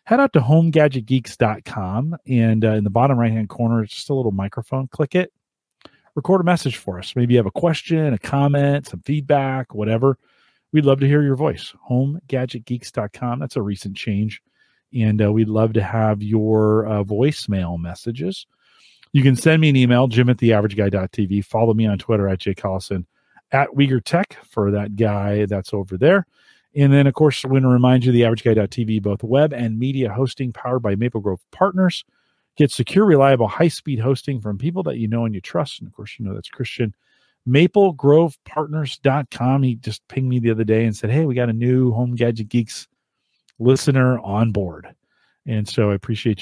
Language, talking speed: English, 185 wpm